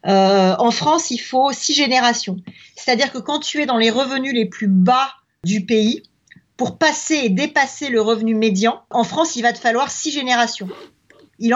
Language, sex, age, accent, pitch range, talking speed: French, female, 40-59, French, 220-275 Hz, 185 wpm